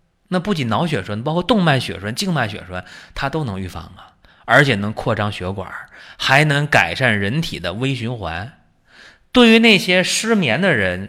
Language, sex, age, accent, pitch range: Chinese, male, 20-39, native, 95-140 Hz